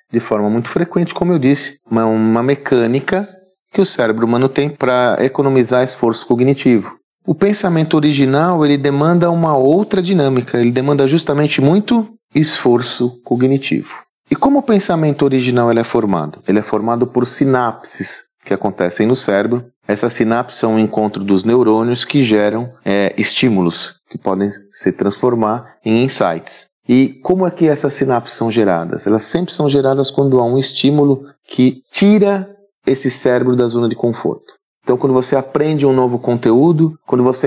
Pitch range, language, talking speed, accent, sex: 120-150 Hz, Portuguese, 160 wpm, Brazilian, male